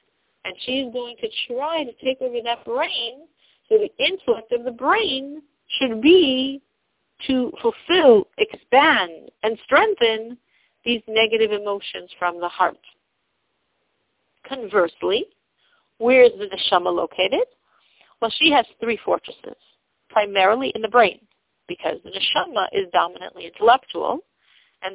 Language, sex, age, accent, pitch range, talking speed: English, female, 50-69, American, 205-330 Hz, 125 wpm